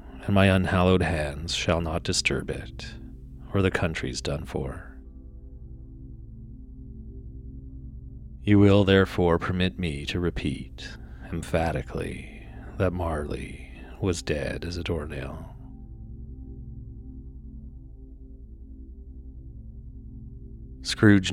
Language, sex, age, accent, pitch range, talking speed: English, male, 40-59, American, 65-90 Hz, 80 wpm